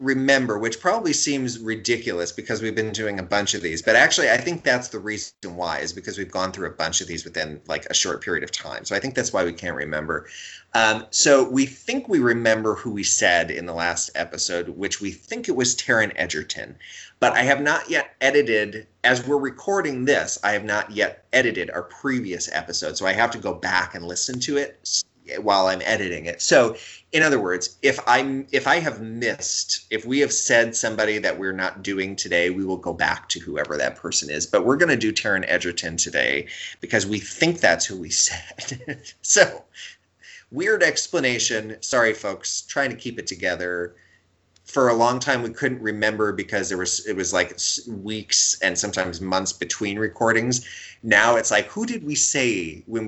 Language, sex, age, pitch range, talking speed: English, male, 30-49, 95-125 Hz, 200 wpm